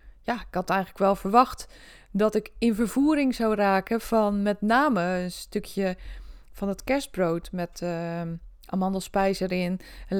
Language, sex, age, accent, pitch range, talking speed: Dutch, female, 20-39, Dutch, 185-230 Hz, 145 wpm